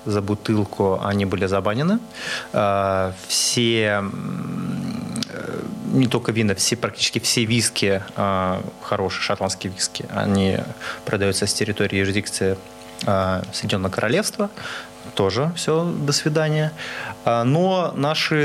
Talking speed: 95 wpm